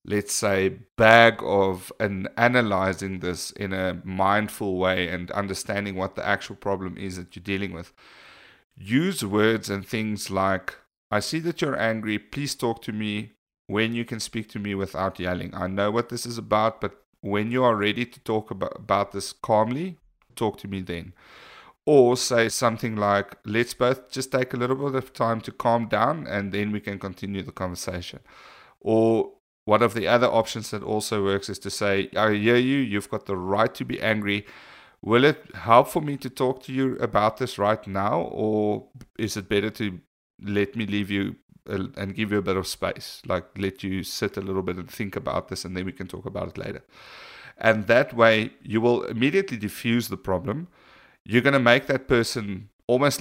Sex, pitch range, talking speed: male, 100-120 Hz, 195 wpm